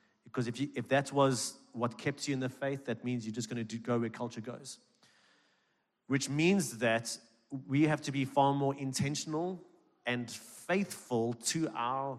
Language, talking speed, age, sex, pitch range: English, 170 wpm, 30-49, male, 120-145 Hz